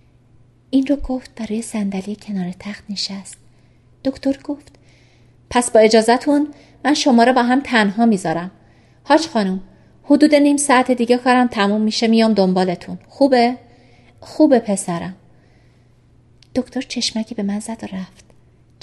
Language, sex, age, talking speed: Persian, female, 30-49, 130 wpm